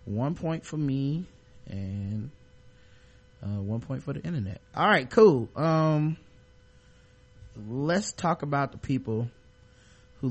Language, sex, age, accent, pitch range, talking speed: English, male, 20-39, American, 130-205 Hz, 120 wpm